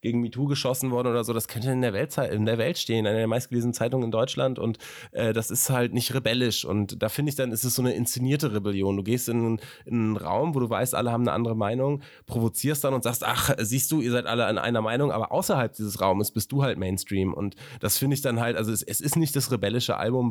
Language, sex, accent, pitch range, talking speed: German, male, German, 105-125 Hz, 265 wpm